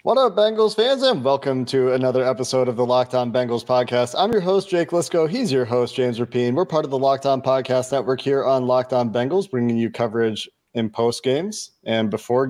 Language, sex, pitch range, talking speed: English, male, 120-145 Hz, 205 wpm